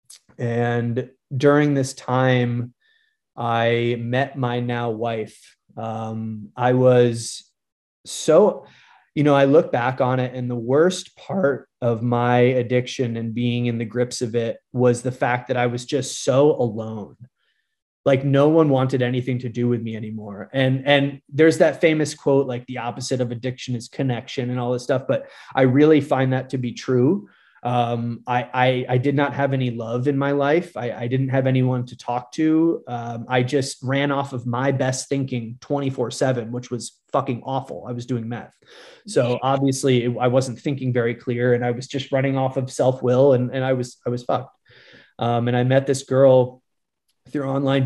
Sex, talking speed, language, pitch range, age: male, 185 wpm, English, 120-135 Hz, 20-39